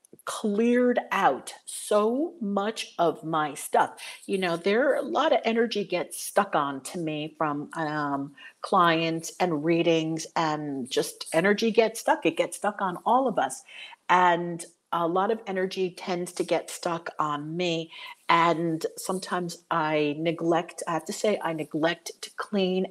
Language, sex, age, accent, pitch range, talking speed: English, female, 50-69, American, 165-210 Hz, 155 wpm